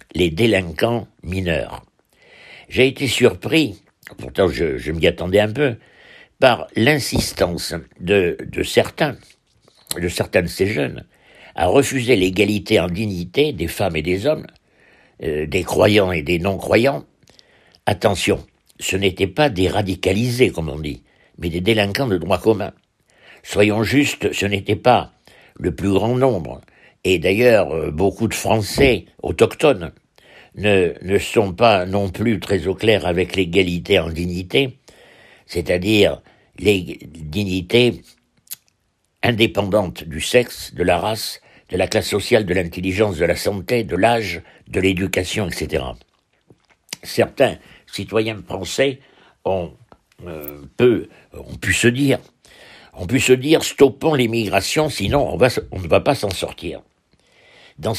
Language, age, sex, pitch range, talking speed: French, 60-79, male, 90-125 Hz, 135 wpm